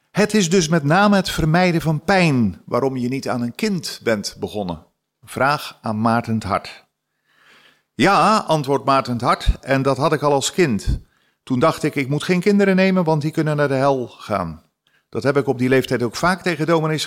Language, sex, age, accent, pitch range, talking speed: Dutch, male, 50-69, Dutch, 110-155 Hz, 200 wpm